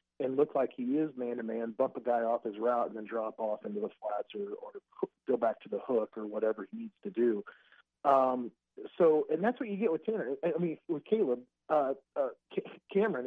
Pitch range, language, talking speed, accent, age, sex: 120-170 Hz, English, 225 wpm, American, 40-59, male